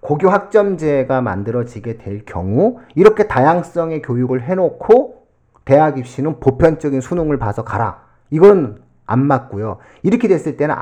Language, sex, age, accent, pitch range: Korean, male, 40-59, native, 110-165 Hz